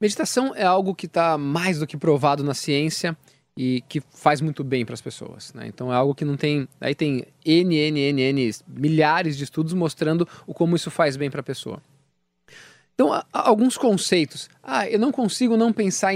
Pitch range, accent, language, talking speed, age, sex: 150-215 Hz, Brazilian, English, 200 wpm, 20-39, male